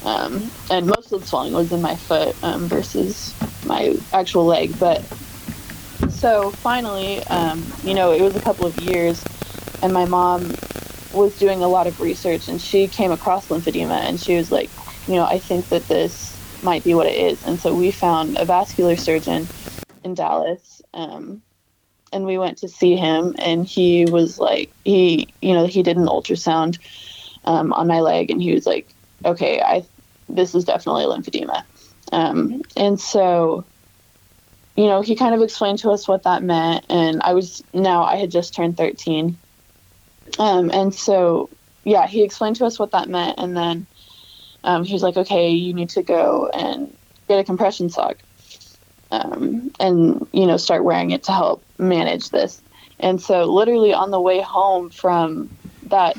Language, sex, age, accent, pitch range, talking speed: English, female, 20-39, American, 165-195 Hz, 180 wpm